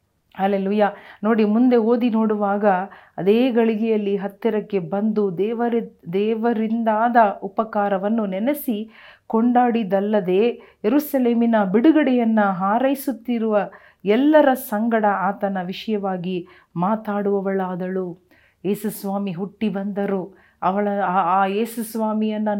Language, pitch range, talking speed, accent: Kannada, 195-225 Hz, 75 wpm, native